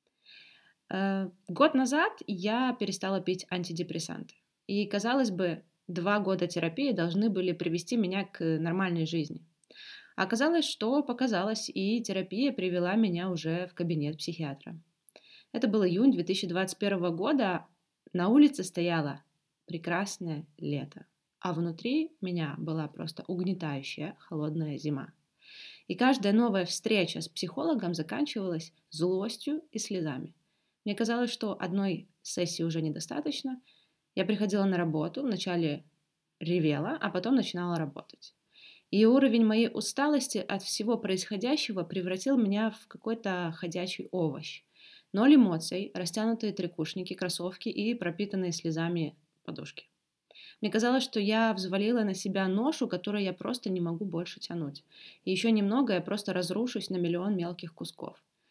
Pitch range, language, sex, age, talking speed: 170-220 Hz, Russian, female, 20-39, 125 wpm